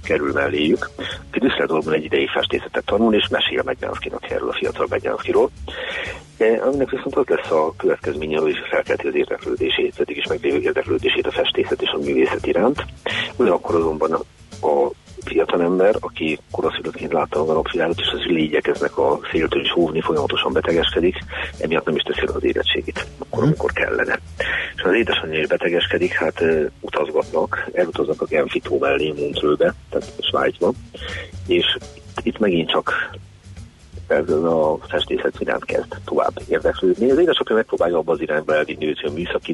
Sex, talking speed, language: male, 150 wpm, Hungarian